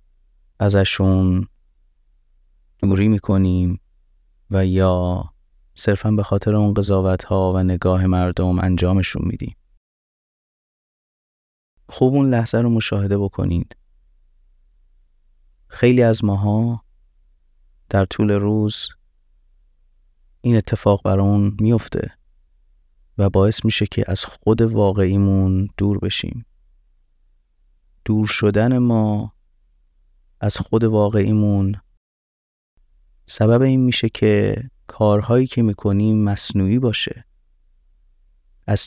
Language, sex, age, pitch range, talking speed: Persian, male, 30-49, 75-105 Hz, 90 wpm